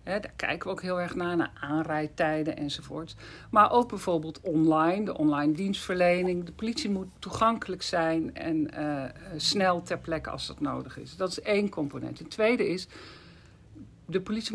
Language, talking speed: Dutch, 165 wpm